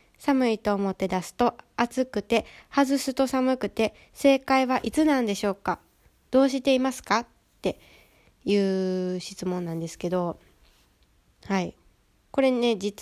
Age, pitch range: 20-39, 190-265 Hz